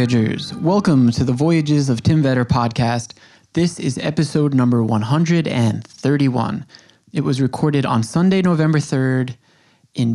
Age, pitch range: 20-39, 130-165 Hz